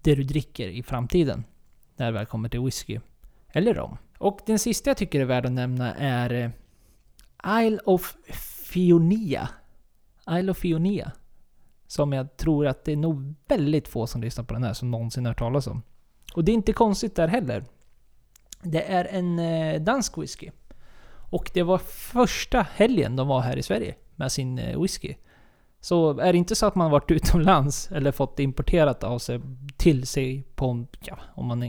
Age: 20-39